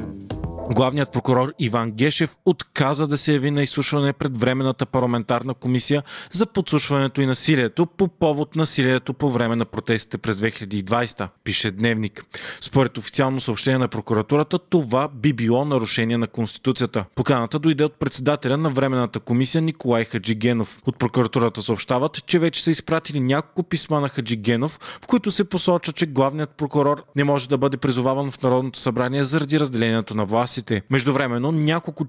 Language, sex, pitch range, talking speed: Bulgarian, male, 125-155 Hz, 155 wpm